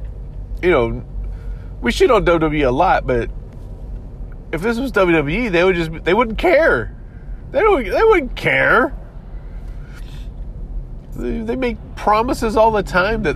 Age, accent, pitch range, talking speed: 40-59, American, 110-150 Hz, 140 wpm